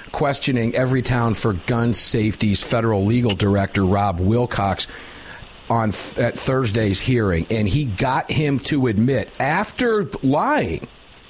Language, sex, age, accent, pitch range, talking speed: English, male, 50-69, American, 115-155 Hz, 120 wpm